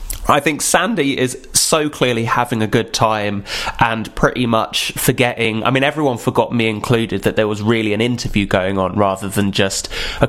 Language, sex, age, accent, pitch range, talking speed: English, male, 20-39, British, 110-155 Hz, 185 wpm